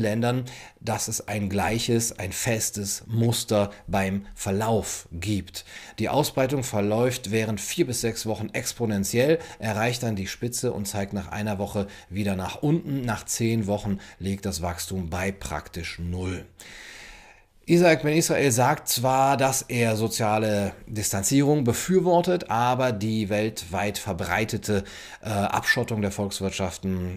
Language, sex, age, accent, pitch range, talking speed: German, male, 40-59, German, 95-115 Hz, 125 wpm